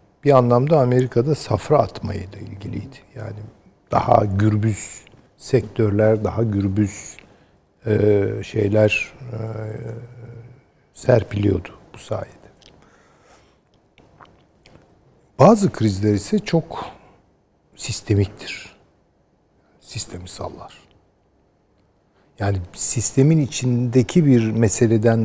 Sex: male